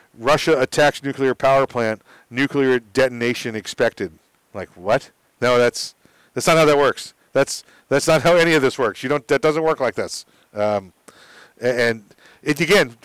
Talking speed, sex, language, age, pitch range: 165 wpm, male, English, 40-59, 115-140 Hz